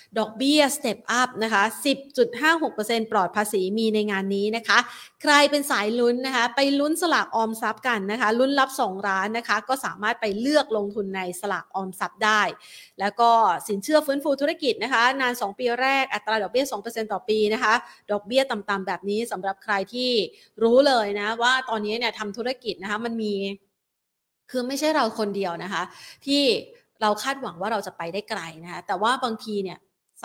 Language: Thai